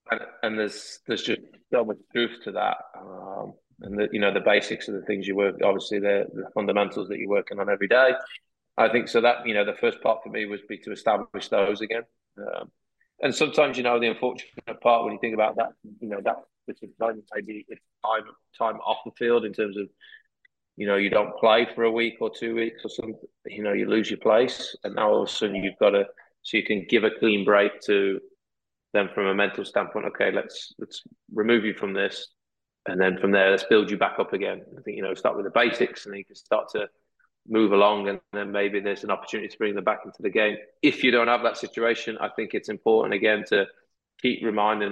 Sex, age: male, 20-39